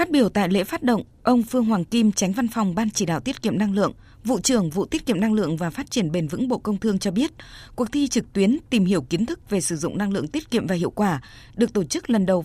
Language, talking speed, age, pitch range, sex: Vietnamese, 290 wpm, 20-39, 180-230 Hz, female